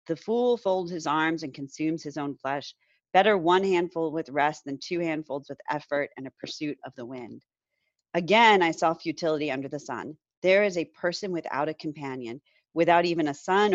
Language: English